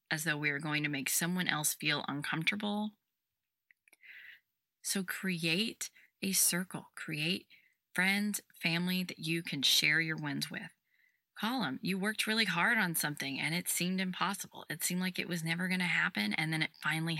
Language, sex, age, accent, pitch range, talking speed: English, female, 20-39, American, 155-205 Hz, 170 wpm